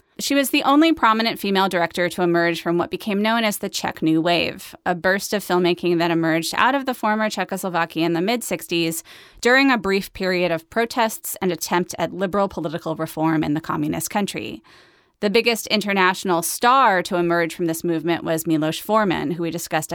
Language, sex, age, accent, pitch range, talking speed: English, female, 20-39, American, 165-220 Hz, 190 wpm